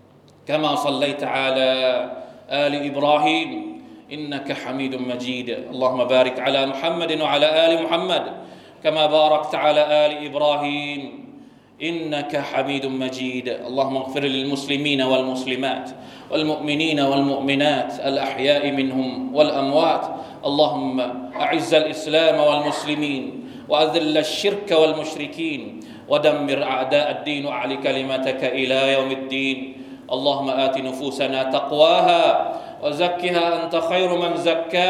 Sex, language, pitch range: male, Thai, 135-155 Hz